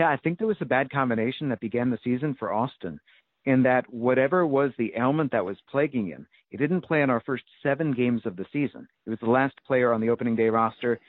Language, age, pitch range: English, 50-69, 120-145 Hz